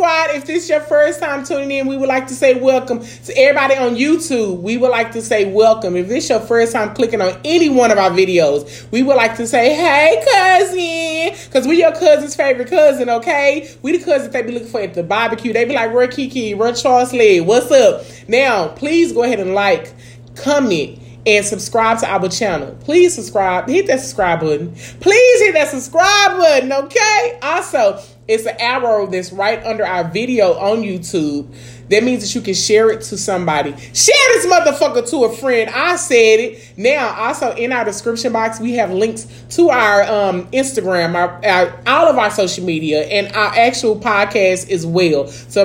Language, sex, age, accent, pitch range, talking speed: English, male, 30-49, American, 195-275 Hz, 200 wpm